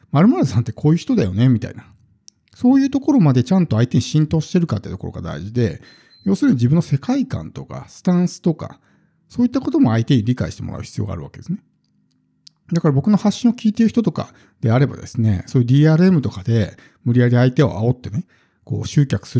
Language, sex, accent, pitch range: Japanese, male, native, 110-160 Hz